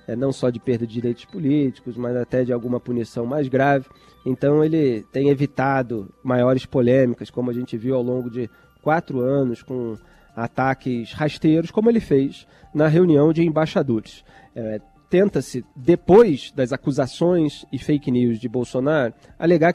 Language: Portuguese